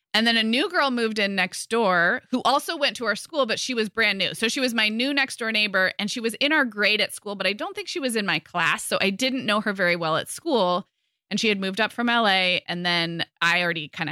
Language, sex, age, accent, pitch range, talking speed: English, female, 20-39, American, 185-250 Hz, 280 wpm